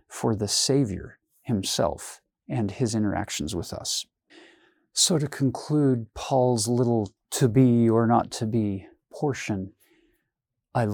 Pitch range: 105-125 Hz